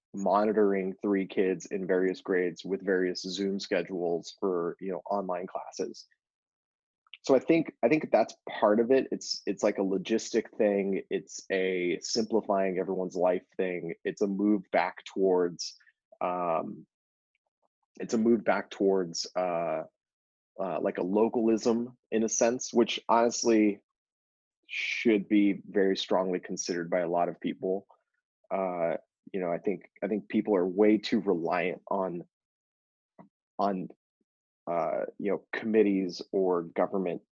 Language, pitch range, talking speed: English, 95-110 Hz, 140 wpm